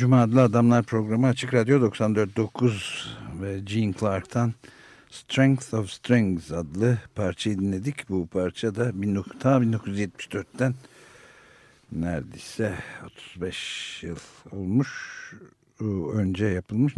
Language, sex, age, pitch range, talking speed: Turkish, male, 60-79, 90-120 Hz, 90 wpm